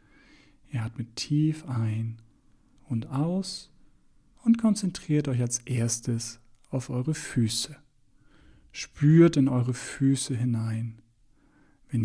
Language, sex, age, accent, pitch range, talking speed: German, male, 40-59, German, 115-140 Hz, 100 wpm